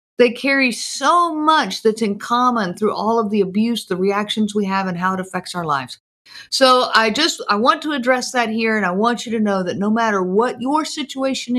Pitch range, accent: 200-265 Hz, American